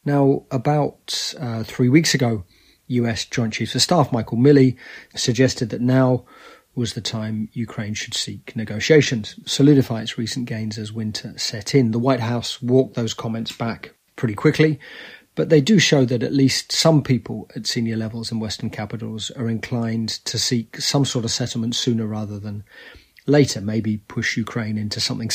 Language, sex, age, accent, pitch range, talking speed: English, male, 30-49, British, 110-130 Hz, 170 wpm